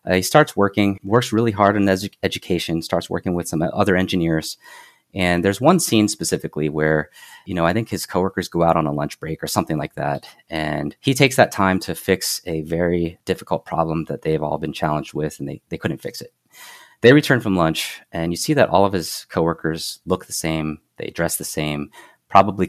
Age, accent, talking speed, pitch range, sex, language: 30-49, American, 210 wpm, 80-100 Hz, male, English